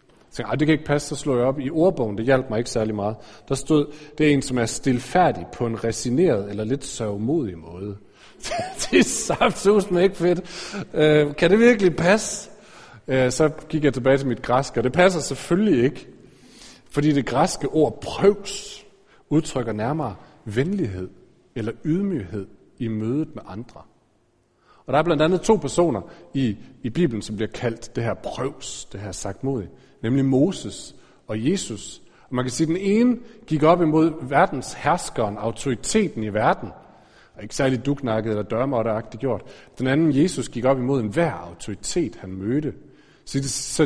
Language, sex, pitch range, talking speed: Danish, male, 115-160 Hz, 180 wpm